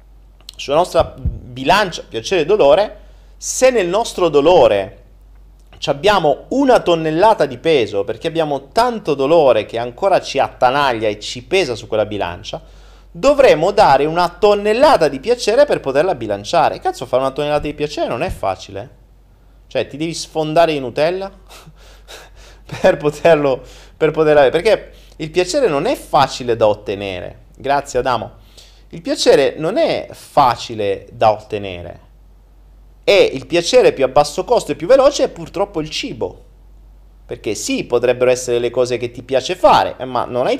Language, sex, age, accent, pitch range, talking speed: Italian, male, 30-49, native, 125-185 Hz, 150 wpm